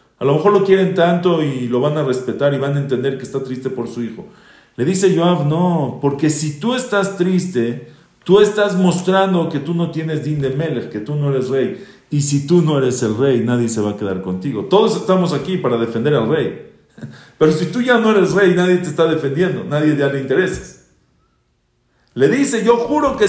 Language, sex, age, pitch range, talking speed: English, male, 50-69, 140-205 Hz, 220 wpm